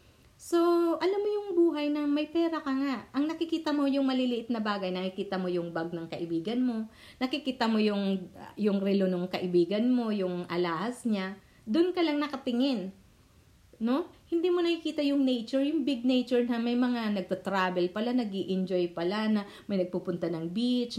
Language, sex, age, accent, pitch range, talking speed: English, female, 40-59, Filipino, 180-260 Hz, 175 wpm